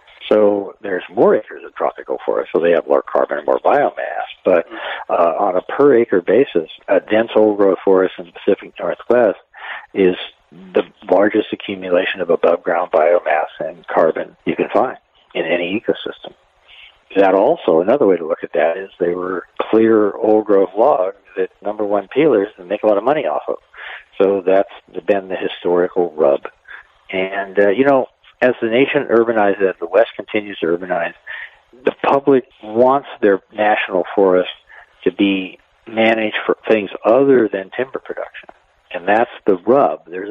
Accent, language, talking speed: American, English, 160 wpm